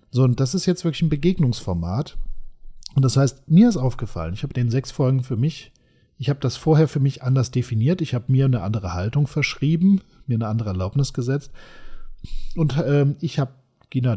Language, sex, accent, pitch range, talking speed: German, male, German, 115-145 Hz, 195 wpm